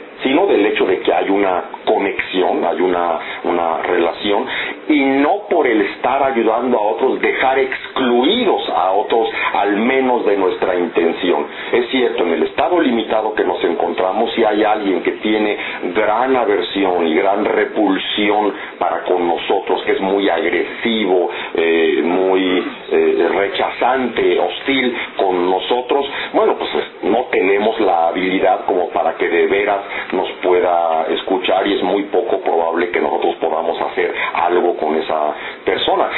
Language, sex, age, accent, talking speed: English, male, 50-69, Mexican, 150 wpm